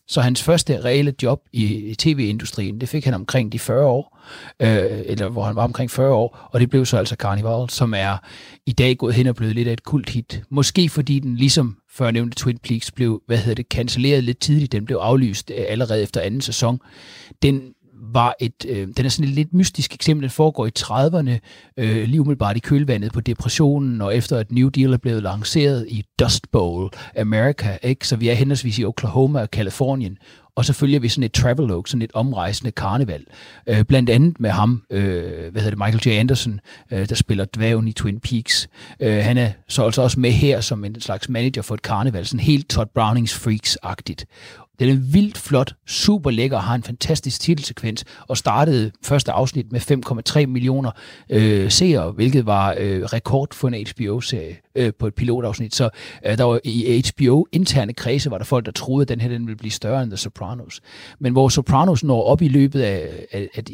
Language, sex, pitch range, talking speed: Danish, male, 110-135 Hz, 205 wpm